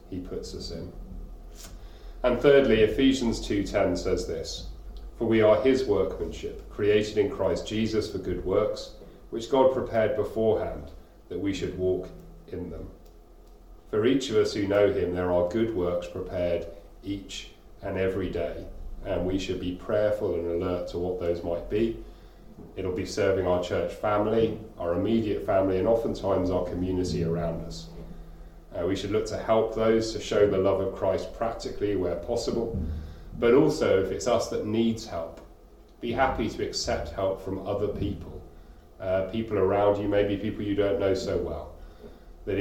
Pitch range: 85-105 Hz